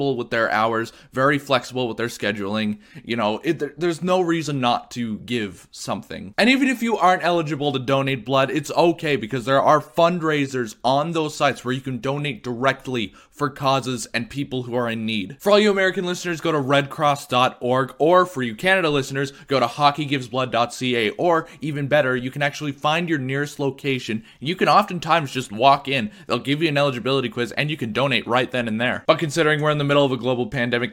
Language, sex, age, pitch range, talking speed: English, male, 20-39, 120-145 Hz, 200 wpm